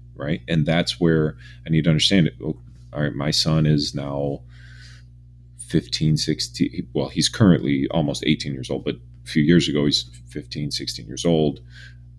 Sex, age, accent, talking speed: male, 30-49, American, 165 wpm